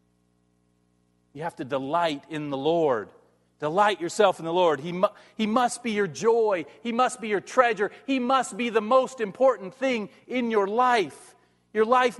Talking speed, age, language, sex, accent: 170 wpm, 40-59, English, male, American